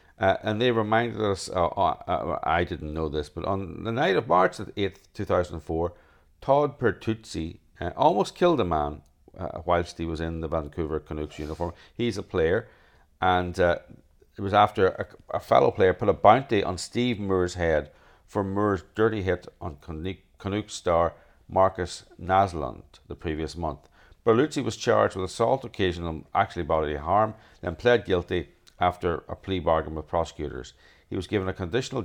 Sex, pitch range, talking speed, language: male, 80-100 Hz, 170 wpm, English